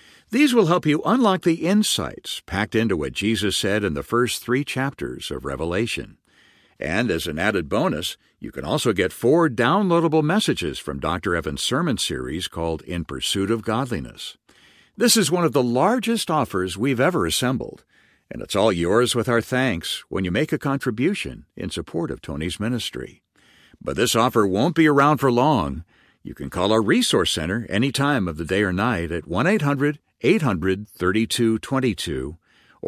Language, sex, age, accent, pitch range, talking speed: English, male, 60-79, American, 85-135 Hz, 165 wpm